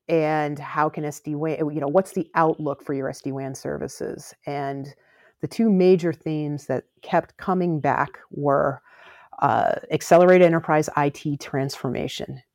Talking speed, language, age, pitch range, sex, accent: 135 wpm, English, 40-59, 140-170 Hz, female, American